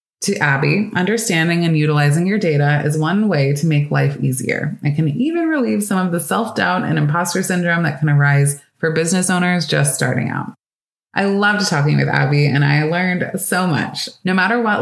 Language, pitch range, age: English, 145-195 Hz, 20-39